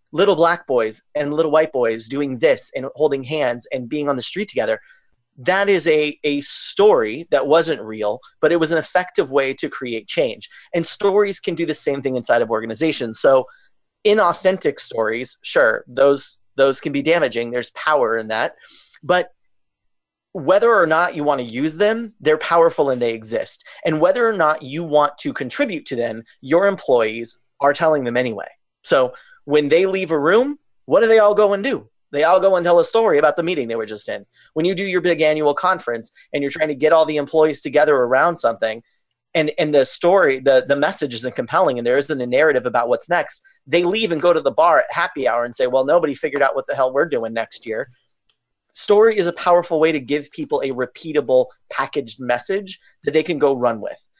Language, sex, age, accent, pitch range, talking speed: English, male, 30-49, American, 135-190 Hz, 210 wpm